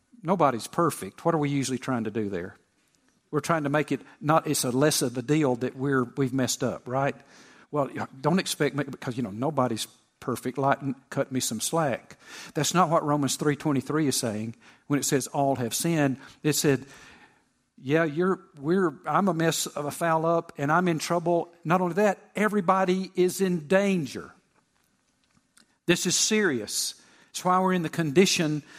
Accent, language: American, English